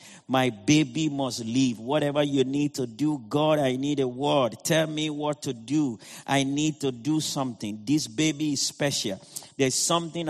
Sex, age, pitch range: male, 50-69, 135-165 Hz